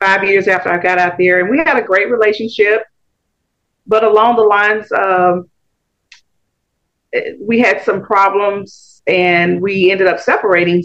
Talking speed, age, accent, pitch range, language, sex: 155 wpm, 40-59, American, 180-225 Hz, English, female